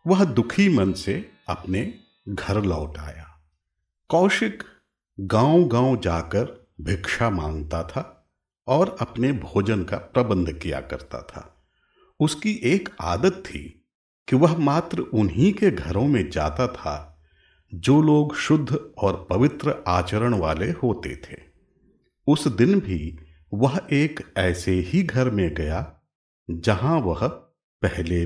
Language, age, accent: Hindi, 50-69, native